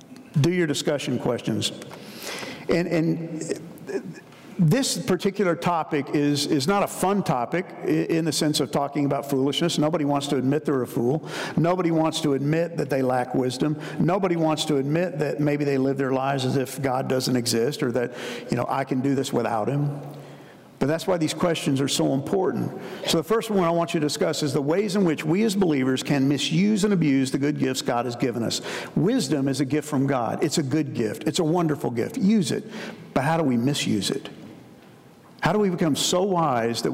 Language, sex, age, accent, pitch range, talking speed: English, male, 50-69, American, 135-170 Hz, 205 wpm